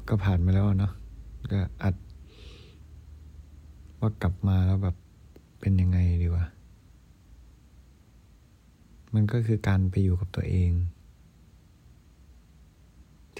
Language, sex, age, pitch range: Thai, male, 20-39, 85-105 Hz